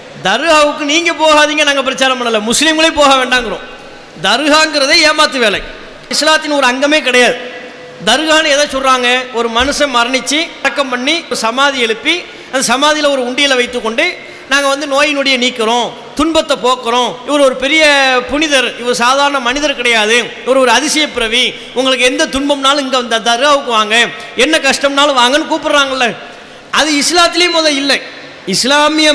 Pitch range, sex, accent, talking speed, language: 245-295 Hz, male, Indian, 155 wpm, English